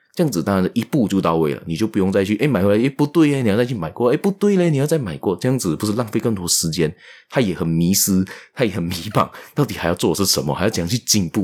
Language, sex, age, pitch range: Chinese, male, 20-39, 90-120 Hz